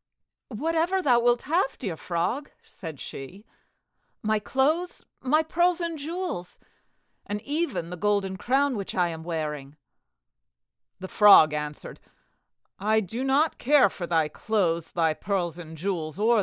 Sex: female